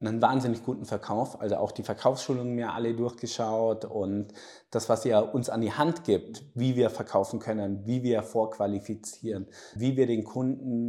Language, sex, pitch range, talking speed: German, male, 110-130 Hz, 170 wpm